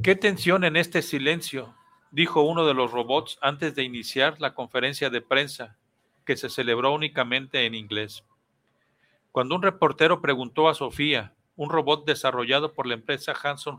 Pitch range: 125-150 Hz